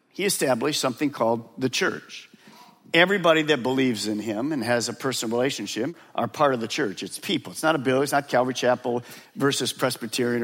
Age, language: 50-69, English